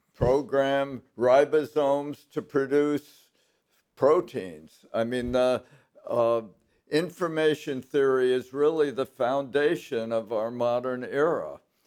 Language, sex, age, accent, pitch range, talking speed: English, male, 60-79, American, 120-145 Hz, 95 wpm